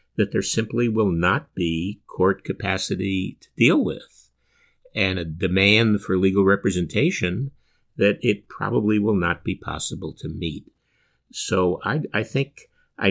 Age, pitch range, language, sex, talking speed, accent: 50-69, 80-105 Hz, English, male, 140 wpm, American